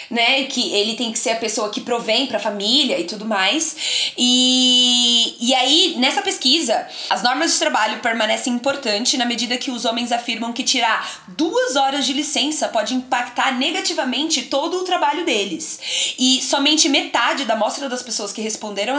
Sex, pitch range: female, 240-300 Hz